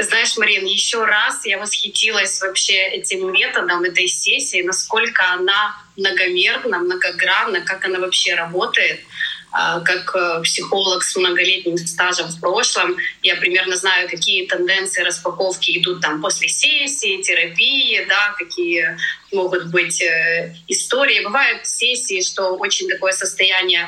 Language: Russian